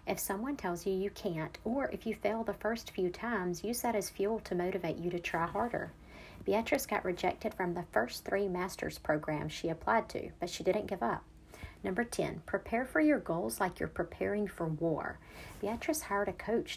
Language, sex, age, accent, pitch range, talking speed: English, female, 40-59, American, 170-215 Hz, 200 wpm